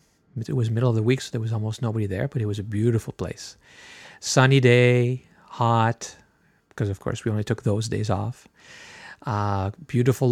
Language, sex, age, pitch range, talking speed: English, male, 40-59, 110-130 Hz, 185 wpm